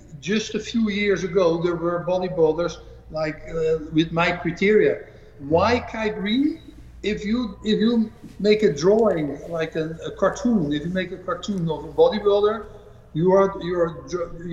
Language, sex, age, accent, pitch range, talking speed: English, male, 60-79, Dutch, 160-215 Hz, 160 wpm